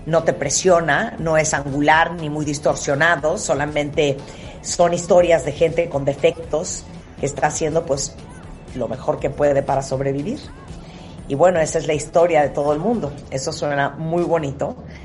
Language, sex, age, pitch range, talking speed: Spanish, female, 50-69, 140-165 Hz, 160 wpm